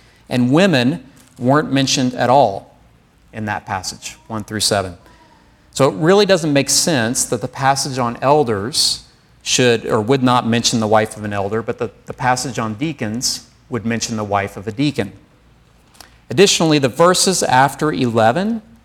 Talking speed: 160 wpm